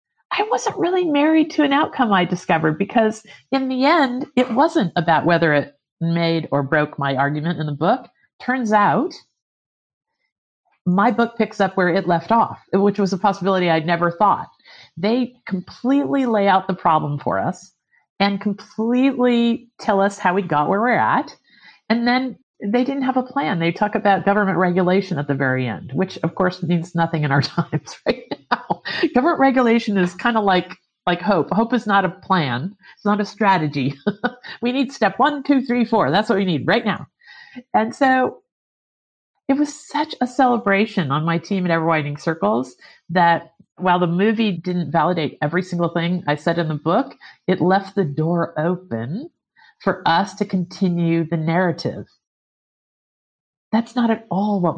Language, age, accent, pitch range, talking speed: English, 50-69, American, 165-235 Hz, 175 wpm